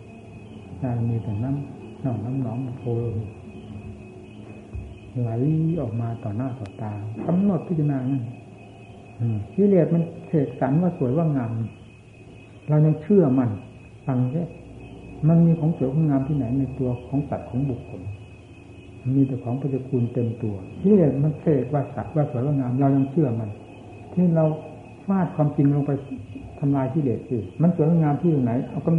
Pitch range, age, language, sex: 115-150 Hz, 60-79, Thai, male